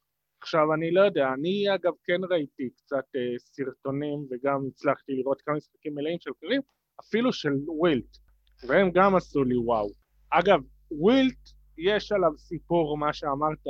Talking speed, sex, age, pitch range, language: 150 wpm, male, 30-49, 135-170 Hz, Hebrew